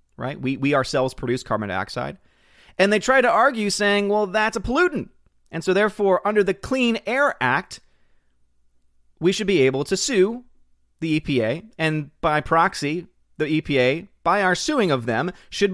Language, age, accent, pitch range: English, 30-49, American, 125-185 Hz